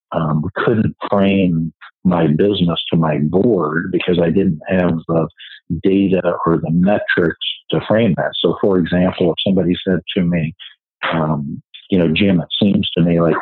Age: 50-69